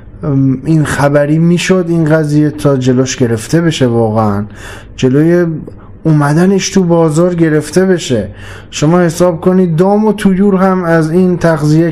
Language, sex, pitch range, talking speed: Persian, male, 115-175 Hz, 130 wpm